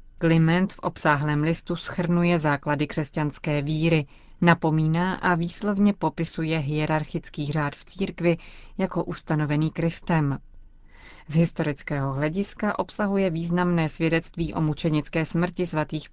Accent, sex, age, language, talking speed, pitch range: native, female, 30-49, Czech, 110 wpm, 150-180 Hz